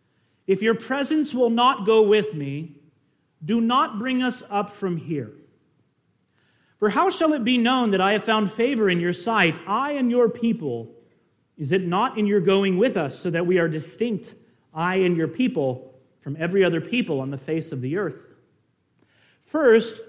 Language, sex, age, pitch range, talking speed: English, male, 40-59, 160-220 Hz, 180 wpm